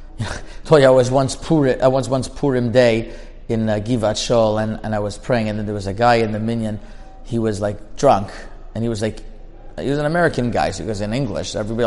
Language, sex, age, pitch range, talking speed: English, male, 30-49, 115-170 Hz, 250 wpm